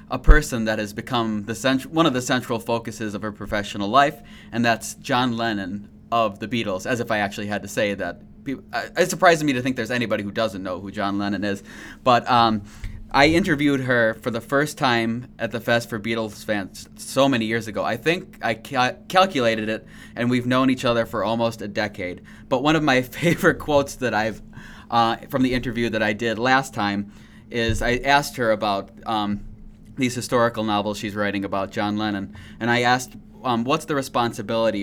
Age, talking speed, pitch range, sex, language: 20-39, 205 wpm, 105-125 Hz, male, English